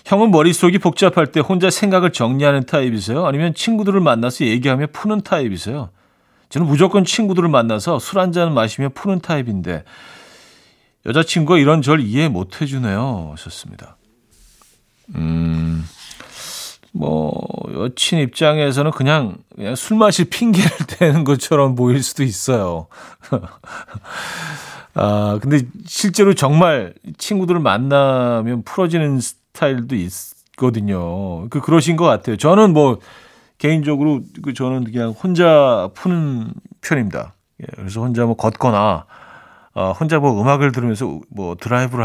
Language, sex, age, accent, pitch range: Korean, male, 40-59, native, 110-165 Hz